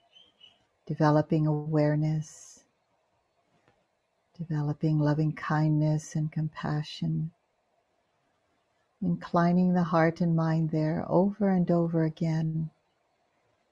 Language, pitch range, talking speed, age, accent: English, 155-170 Hz, 75 wpm, 60-79, American